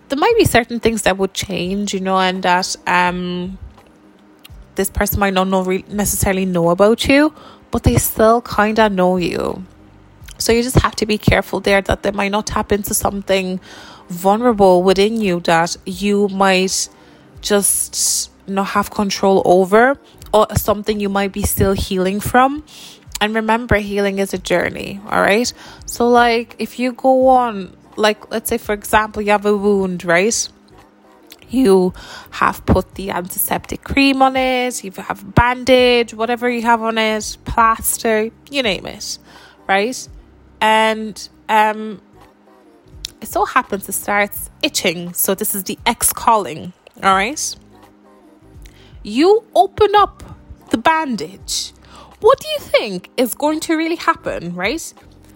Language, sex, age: English, female, 20-39